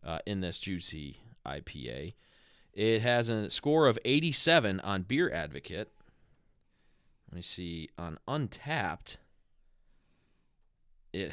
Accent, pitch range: American, 90-130 Hz